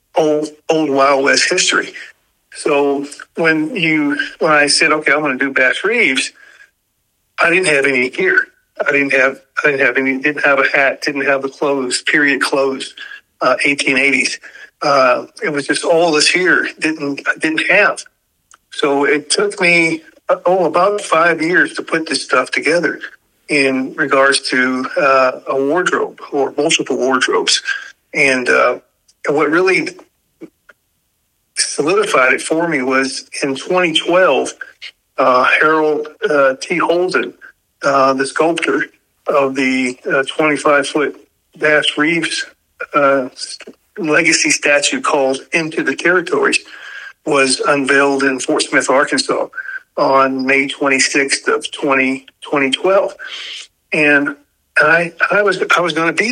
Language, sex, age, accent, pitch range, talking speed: English, male, 50-69, American, 135-205 Hz, 125 wpm